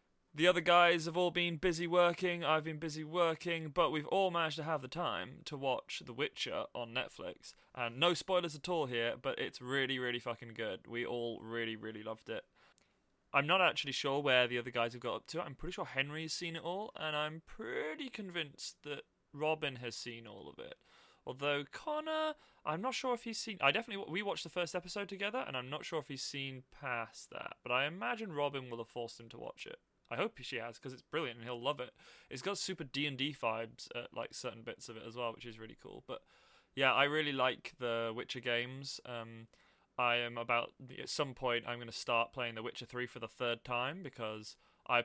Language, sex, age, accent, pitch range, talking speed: English, male, 20-39, British, 120-170 Hz, 220 wpm